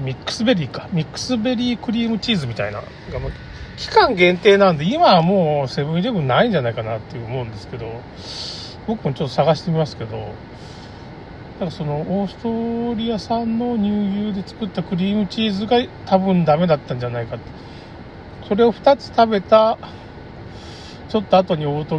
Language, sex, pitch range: Japanese, male, 120-190 Hz